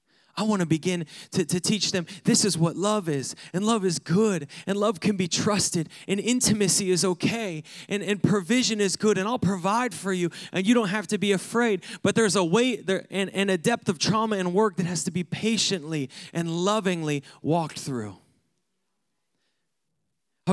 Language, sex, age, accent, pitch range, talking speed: English, male, 20-39, American, 170-200 Hz, 190 wpm